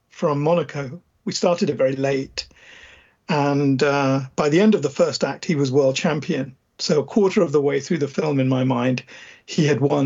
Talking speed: 215 wpm